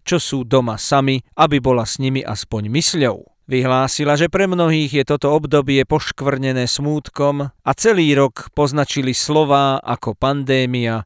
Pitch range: 130-160 Hz